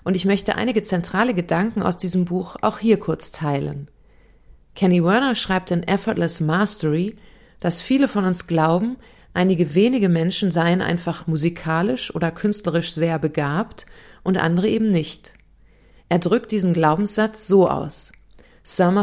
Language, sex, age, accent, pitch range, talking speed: German, female, 40-59, German, 165-205 Hz, 140 wpm